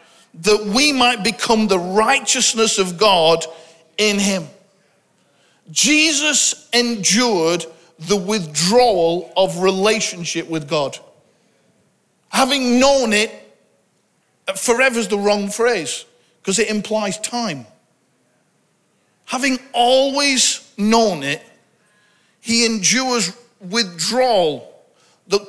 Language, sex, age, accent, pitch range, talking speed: English, male, 50-69, British, 190-260 Hz, 90 wpm